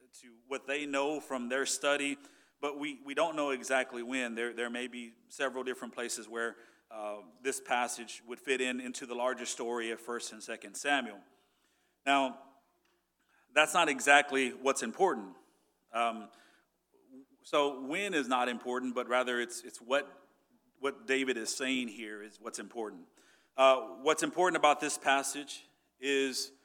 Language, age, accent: English, 40-59, American